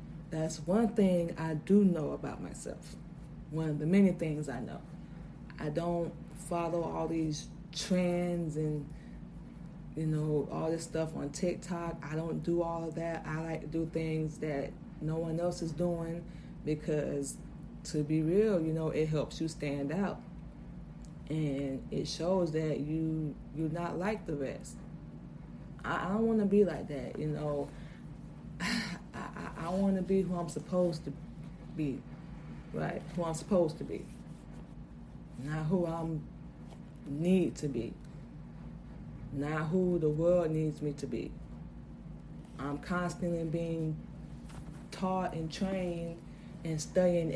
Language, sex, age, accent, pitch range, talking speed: English, female, 20-39, American, 150-175 Hz, 145 wpm